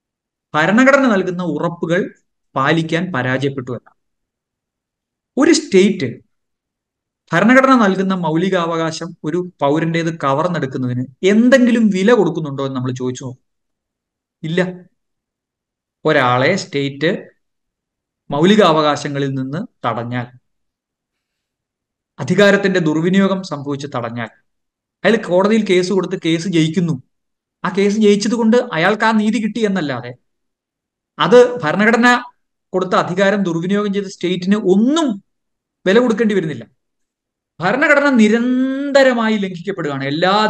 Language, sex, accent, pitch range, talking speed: Malayalam, male, native, 150-215 Hz, 85 wpm